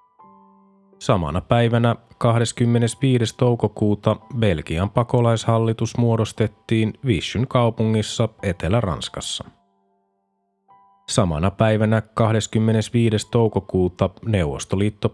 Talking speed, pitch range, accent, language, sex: 60 wpm, 105-120 Hz, native, Finnish, male